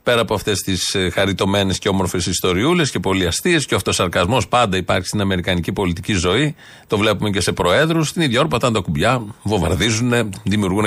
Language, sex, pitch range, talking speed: Greek, male, 100-130 Hz, 175 wpm